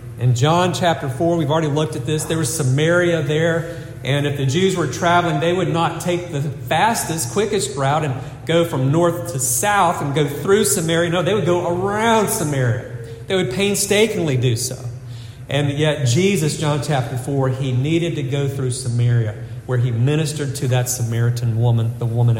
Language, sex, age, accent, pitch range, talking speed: English, male, 40-59, American, 125-170 Hz, 185 wpm